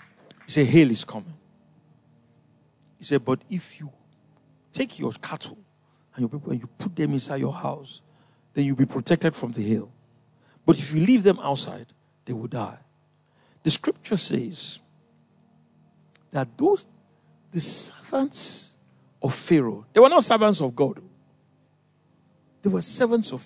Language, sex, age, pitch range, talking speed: English, male, 50-69, 135-185 Hz, 150 wpm